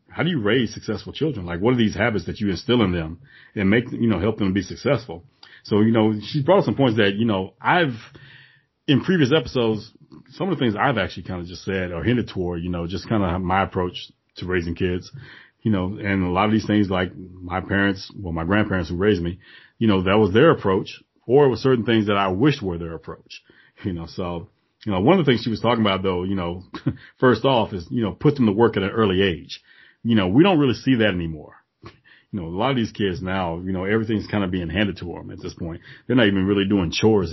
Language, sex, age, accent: English, male, 30-49, American